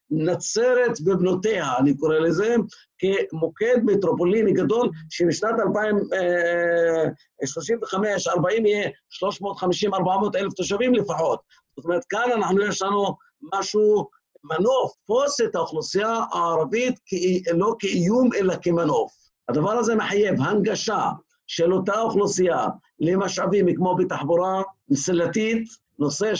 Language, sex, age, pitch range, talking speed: Hebrew, male, 50-69, 170-210 Hz, 95 wpm